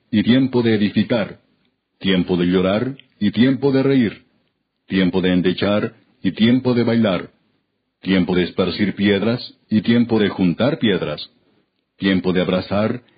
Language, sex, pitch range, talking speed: Spanish, male, 95-115 Hz, 135 wpm